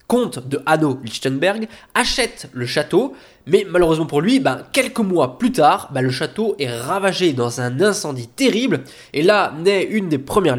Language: French